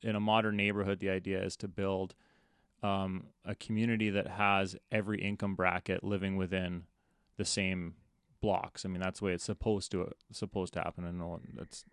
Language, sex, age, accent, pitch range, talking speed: English, male, 30-49, American, 95-110 Hz, 180 wpm